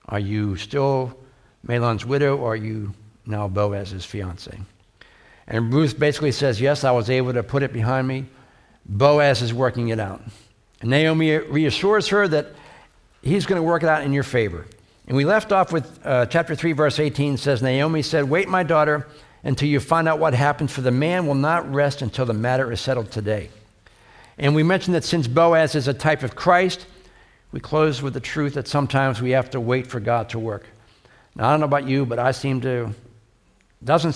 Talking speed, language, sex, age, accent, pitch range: 200 wpm, English, male, 60-79, American, 110-145 Hz